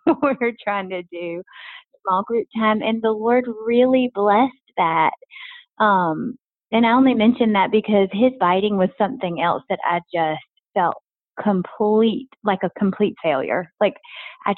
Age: 30-49